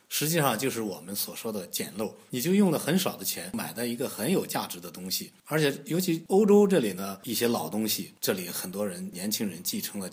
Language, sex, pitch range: Chinese, male, 100-155 Hz